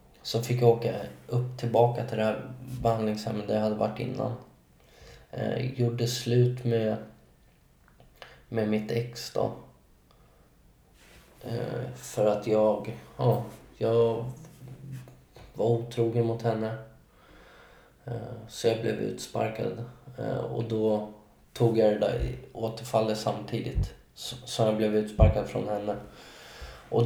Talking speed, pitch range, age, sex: 120 wpm, 110-120 Hz, 20-39, male